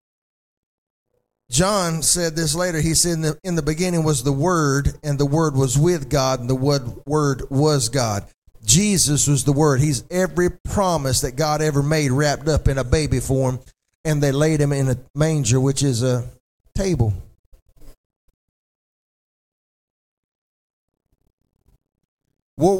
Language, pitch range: English, 135-185 Hz